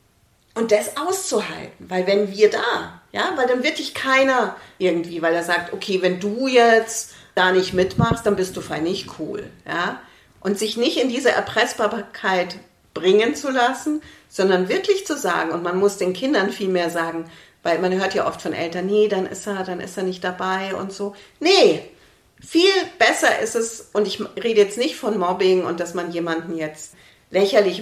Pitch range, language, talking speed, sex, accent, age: 175-220 Hz, German, 190 wpm, female, German, 40-59